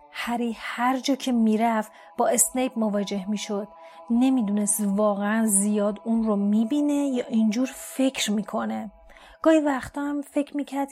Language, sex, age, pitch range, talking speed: Persian, female, 30-49, 205-240 Hz, 130 wpm